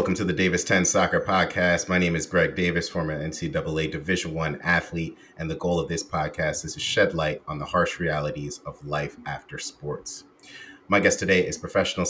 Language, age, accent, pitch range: English, 30-49, American, 80-95 Hz